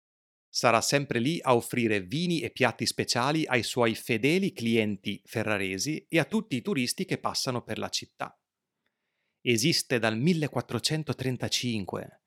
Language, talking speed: Italian, 130 wpm